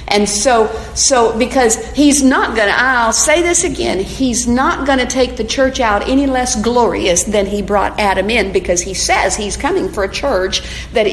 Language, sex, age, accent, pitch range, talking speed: English, female, 50-69, American, 195-275 Hz, 200 wpm